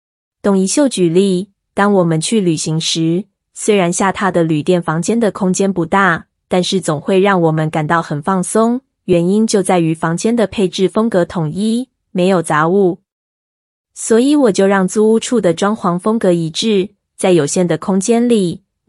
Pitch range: 175-210 Hz